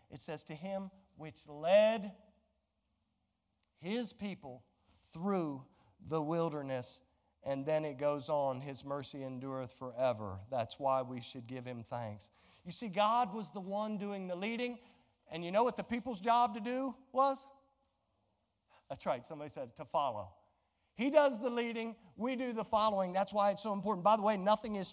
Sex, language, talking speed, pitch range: male, English, 170 wpm, 140-215 Hz